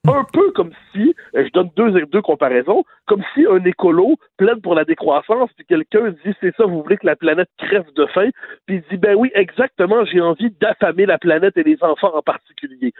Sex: male